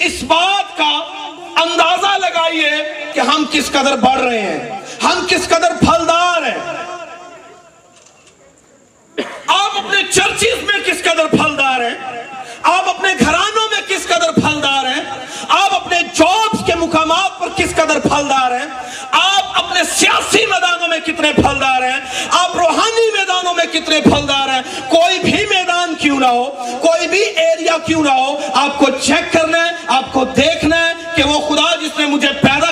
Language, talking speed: Urdu, 120 wpm